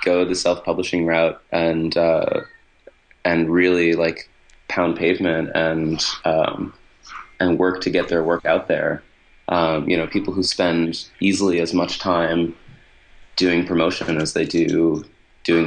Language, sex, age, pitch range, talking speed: English, male, 30-49, 85-90 Hz, 140 wpm